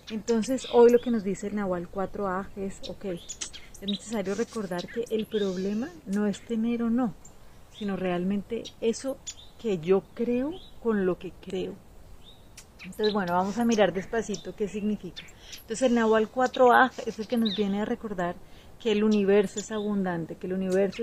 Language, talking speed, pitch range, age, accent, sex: Spanish, 170 wpm, 190-230 Hz, 30-49, Colombian, female